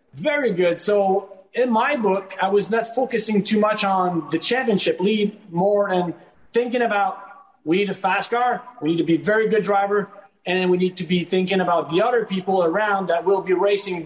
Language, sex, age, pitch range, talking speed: English, male, 30-49, 165-200 Hz, 200 wpm